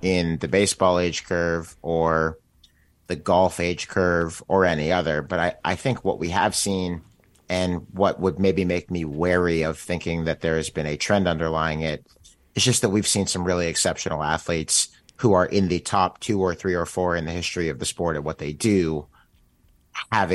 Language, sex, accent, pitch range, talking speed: English, male, American, 80-90 Hz, 200 wpm